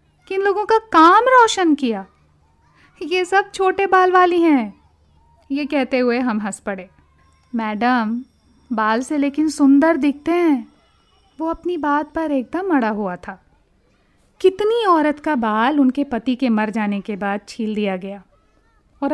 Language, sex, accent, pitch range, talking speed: Hindi, female, native, 245-370 Hz, 150 wpm